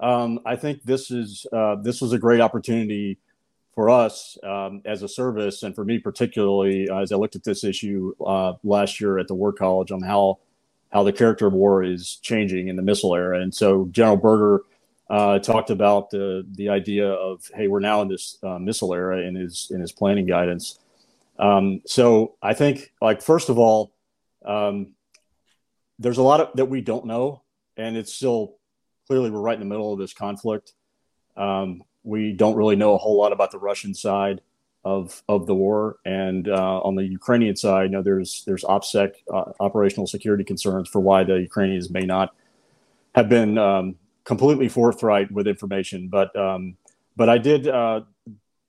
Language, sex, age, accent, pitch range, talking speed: English, male, 40-59, American, 95-115 Hz, 185 wpm